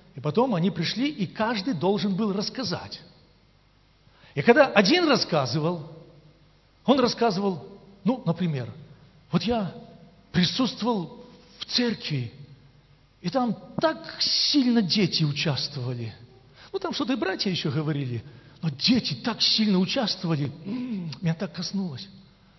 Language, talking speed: Russian, 115 wpm